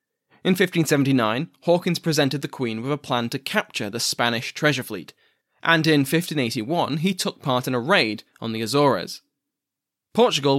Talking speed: 160 wpm